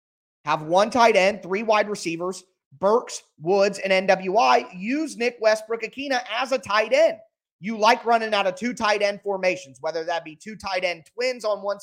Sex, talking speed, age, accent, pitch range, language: male, 185 wpm, 30-49, American, 175-230 Hz, English